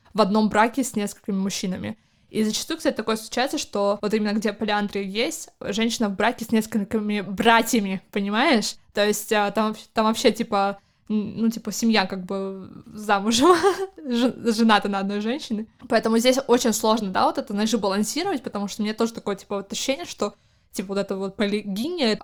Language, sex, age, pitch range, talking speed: Russian, female, 20-39, 205-235 Hz, 170 wpm